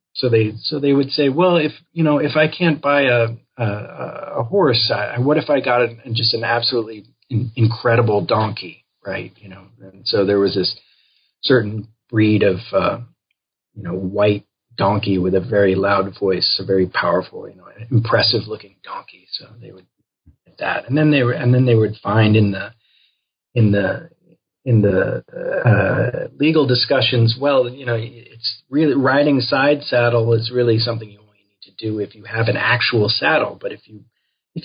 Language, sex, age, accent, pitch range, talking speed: English, male, 40-59, American, 105-130 Hz, 185 wpm